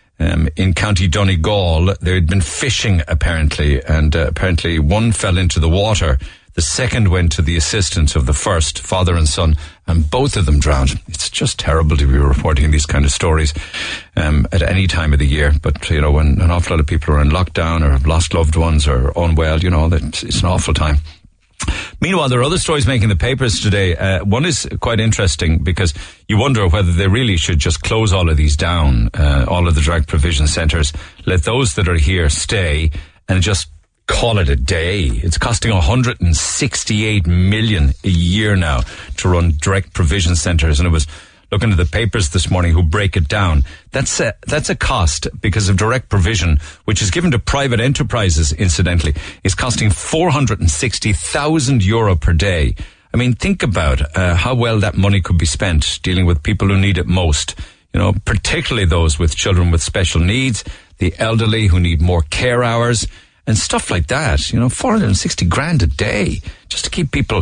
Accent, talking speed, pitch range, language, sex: Irish, 195 wpm, 80-100 Hz, English, male